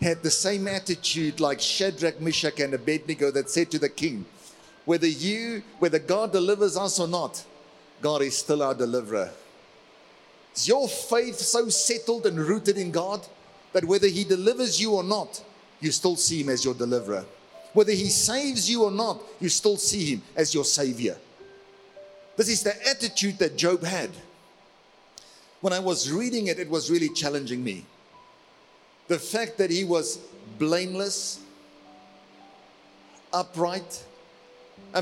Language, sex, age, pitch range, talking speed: English, male, 50-69, 150-205 Hz, 150 wpm